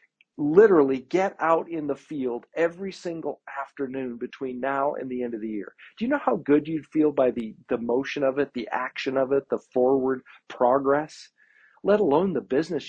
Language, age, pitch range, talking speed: English, 50-69, 125-160 Hz, 190 wpm